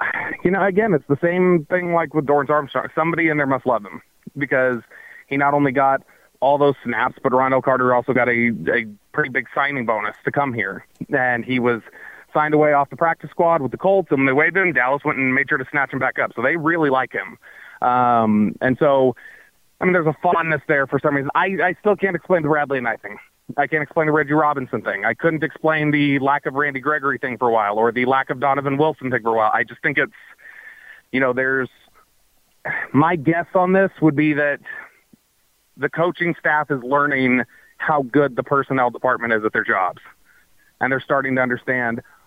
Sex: male